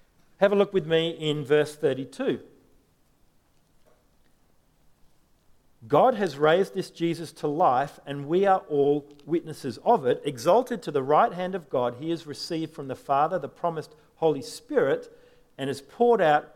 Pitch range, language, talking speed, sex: 150-210 Hz, English, 155 wpm, male